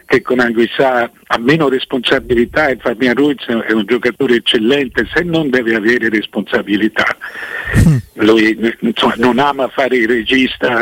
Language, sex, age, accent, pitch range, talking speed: Italian, male, 60-79, native, 120-145 Hz, 135 wpm